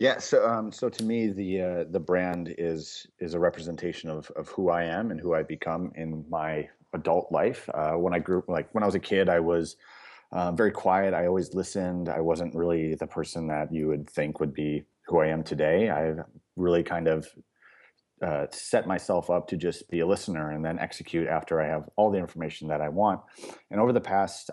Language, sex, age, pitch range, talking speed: English, male, 30-49, 80-90 Hz, 220 wpm